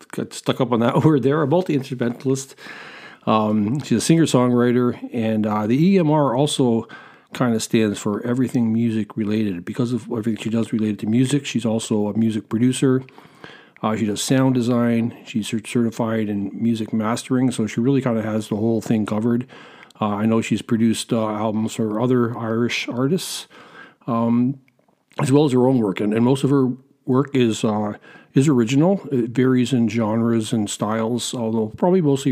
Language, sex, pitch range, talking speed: English, male, 110-130 Hz, 175 wpm